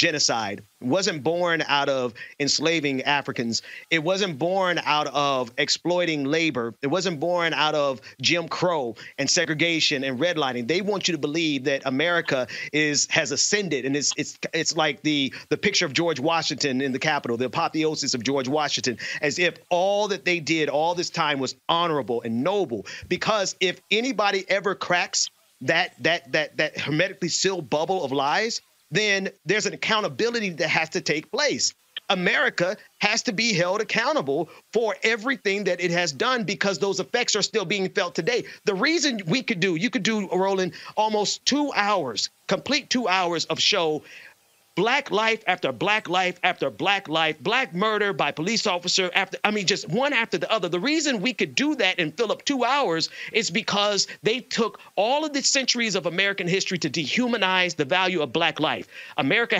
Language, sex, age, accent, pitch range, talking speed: English, male, 40-59, American, 150-205 Hz, 180 wpm